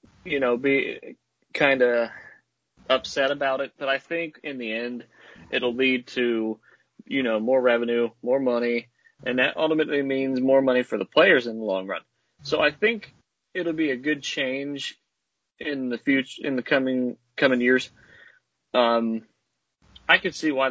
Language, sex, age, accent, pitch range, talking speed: English, male, 30-49, American, 115-145 Hz, 165 wpm